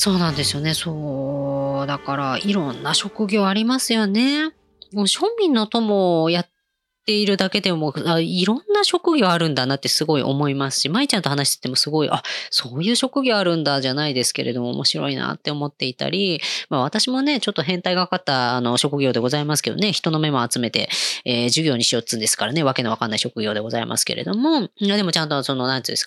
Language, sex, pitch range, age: Japanese, female, 130-200 Hz, 20-39